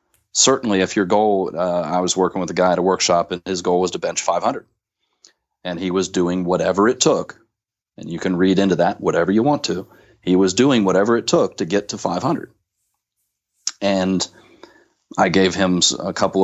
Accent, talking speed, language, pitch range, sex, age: American, 195 wpm, English, 90-105 Hz, male, 30-49